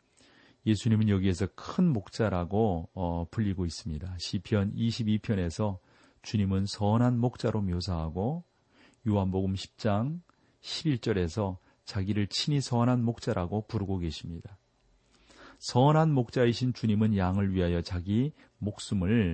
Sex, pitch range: male, 90-120 Hz